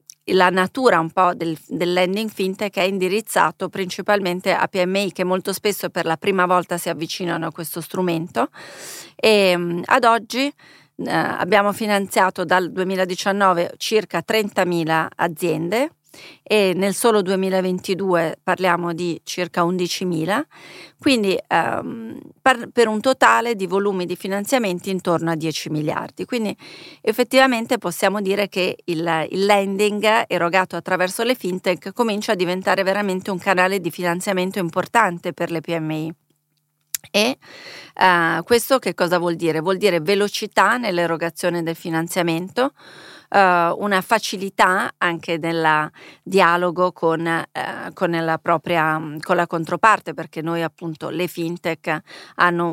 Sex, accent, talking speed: female, native, 130 wpm